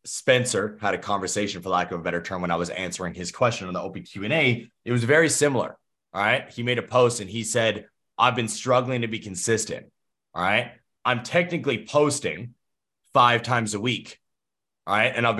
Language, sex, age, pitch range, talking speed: English, male, 30-49, 110-145 Hz, 205 wpm